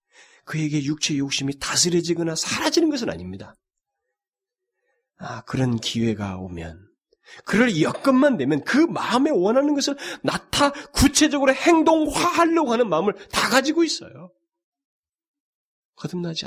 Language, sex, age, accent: Korean, male, 40-59, native